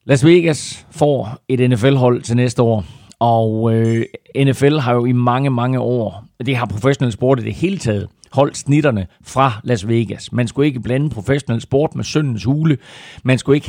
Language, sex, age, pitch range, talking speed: Danish, male, 40-59, 110-130 Hz, 185 wpm